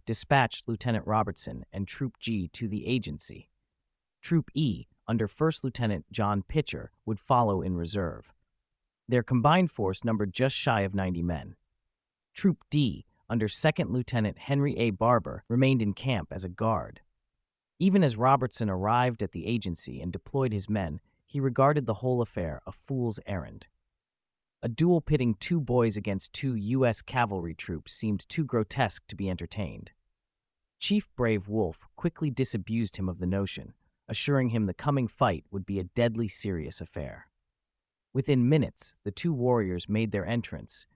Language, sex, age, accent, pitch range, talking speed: English, male, 30-49, American, 95-130 Hz, 155 wpm